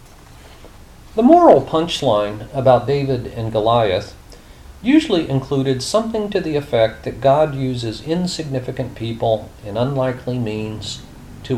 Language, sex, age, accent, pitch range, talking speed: English, male, 40-59, American, 110-155 Hz, 120 wpm